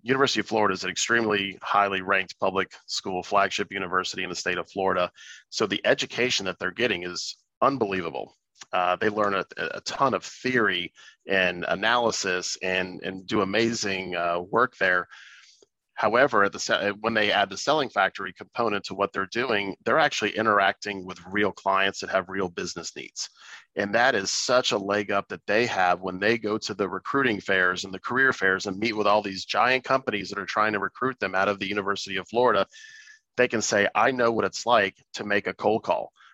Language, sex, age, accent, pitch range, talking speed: English, male, 40-59, American, 95-110 Hz, 195 wpm